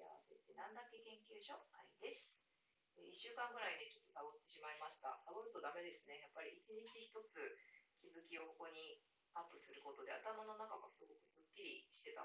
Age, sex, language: 20-39, female, Japanese